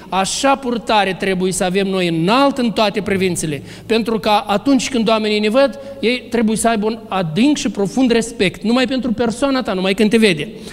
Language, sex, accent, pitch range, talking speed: Romanian, male, native, 190-235 Hz, 190 wpm